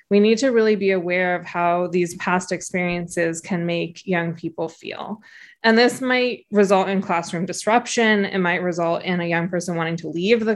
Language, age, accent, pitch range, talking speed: English, 20-39, American, 180-215 Hz, 195 wpm